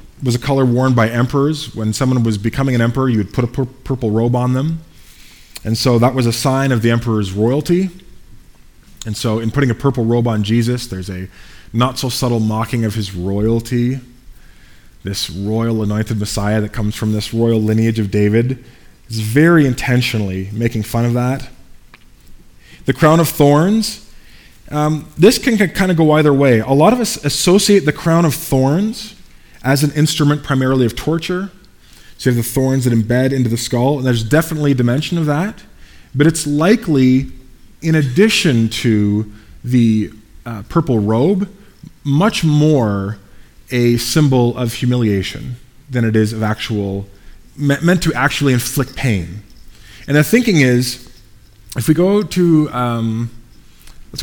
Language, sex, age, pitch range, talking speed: English, male, 20-39, 110-145 Hz, 165 wpm